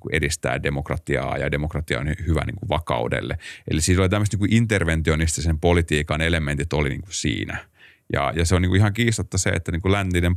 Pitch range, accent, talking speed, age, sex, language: 80-110 Hz, native, 150 wpm, 30-49, male, Finnish